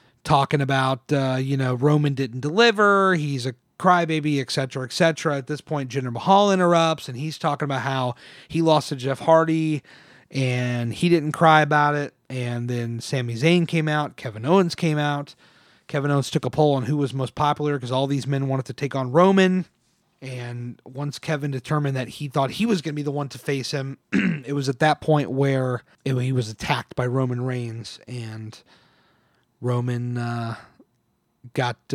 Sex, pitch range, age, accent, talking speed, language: male, 130-160 Hz, 30-49, American, 185 wpm, English